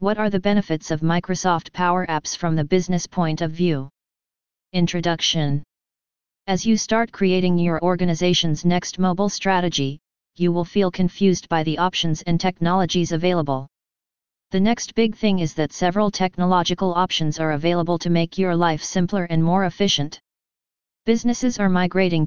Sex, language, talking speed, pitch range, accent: female, English, 150 wpm, 165-185 Hz, American